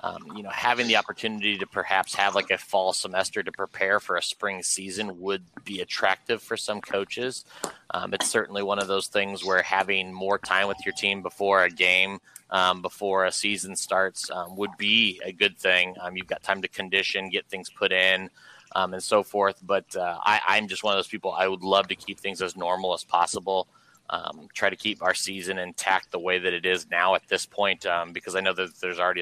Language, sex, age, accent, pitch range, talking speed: English, male, 30-49, American, 95-100 Hz, 220 wpm